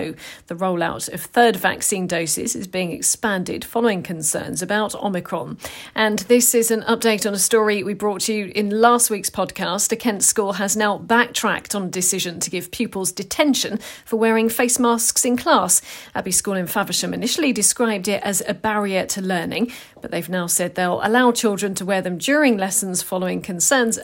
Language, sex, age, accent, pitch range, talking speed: English, female, 40-59, British, 190-235 Hz, 185 wpm